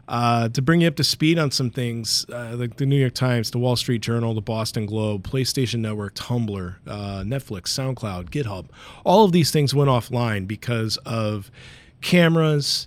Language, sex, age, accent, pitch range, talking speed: English, male, 40-59, American, 110-140 Hz, 180 wpm